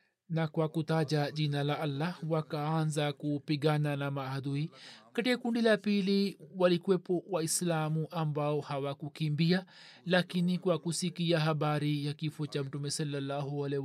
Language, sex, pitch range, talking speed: Swahili, male, 150-175 Hz, 120 wpm